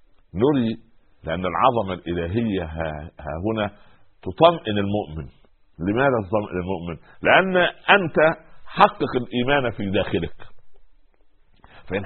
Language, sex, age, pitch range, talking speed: Arabic, male, 50-69, 100-135 Hz, 95 wpm